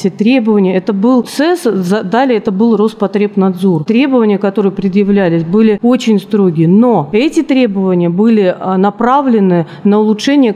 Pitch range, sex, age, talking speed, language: 195-230 Hz, female, 30-49, 120 wpm, Russian